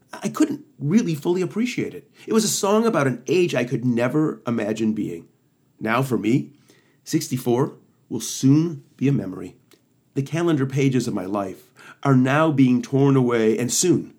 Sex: male